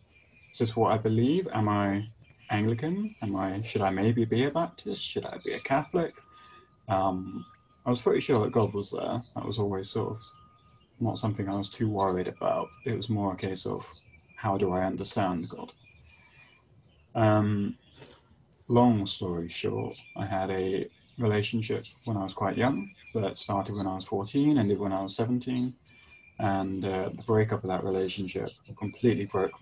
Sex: male